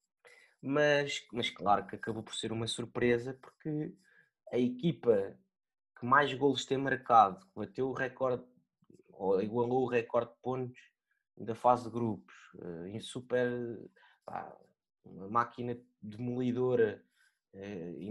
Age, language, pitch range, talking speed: 20-39, Portuguese, 110-130 Hz, 125 wpm